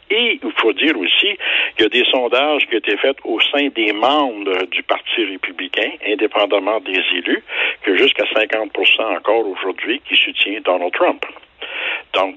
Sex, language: male, French